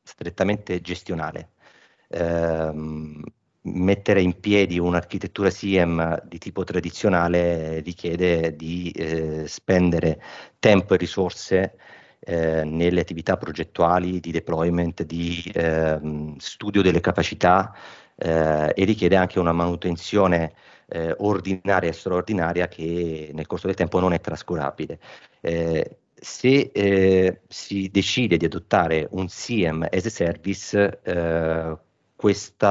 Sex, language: male, Italian